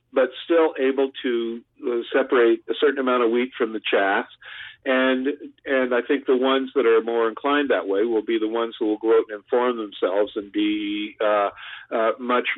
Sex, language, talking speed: male, English, 200 wpm